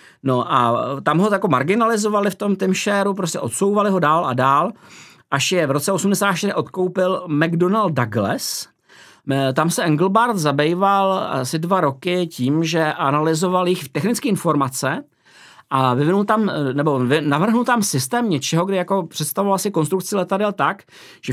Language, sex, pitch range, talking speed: Czech, male, 150-195 Hz, 150 wpm